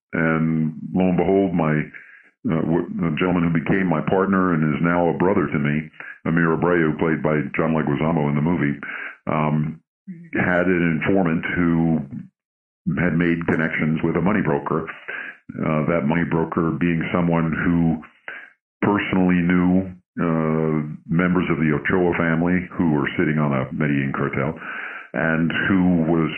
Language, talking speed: English, 145 wpm